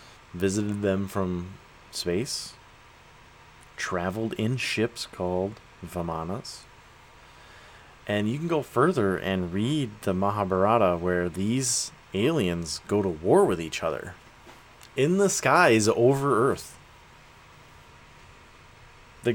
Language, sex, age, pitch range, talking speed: English, male, 30-49, 90-110 Hz, 100 wpm